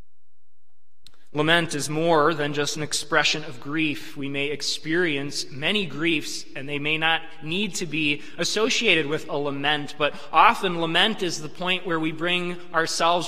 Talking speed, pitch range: 160 wpm, 130-180 Hz